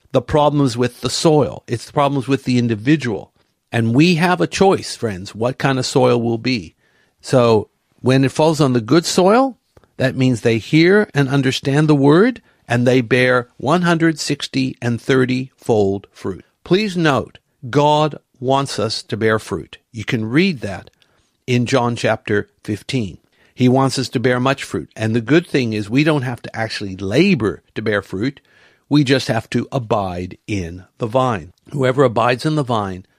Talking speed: 175 wpm